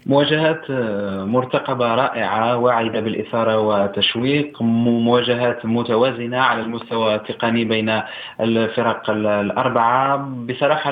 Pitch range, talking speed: 110-130 Hz, 80 wpm